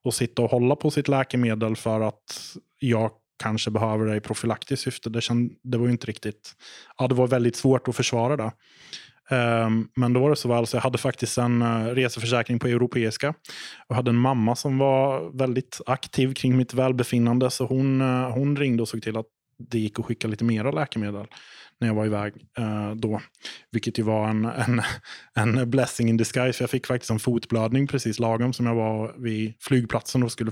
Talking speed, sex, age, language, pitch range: 190 wpm, male, 20-39, English, 115-130 Hz